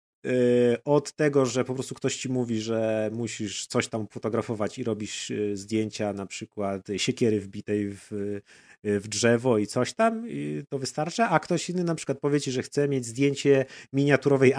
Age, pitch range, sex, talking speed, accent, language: 30-49, 110-140 Hz, male, 170 wpm, native, Polish